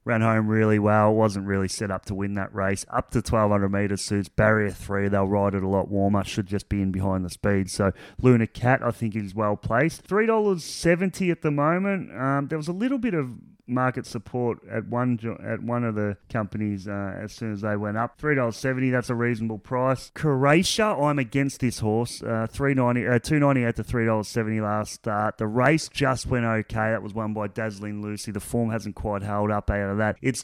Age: 30-49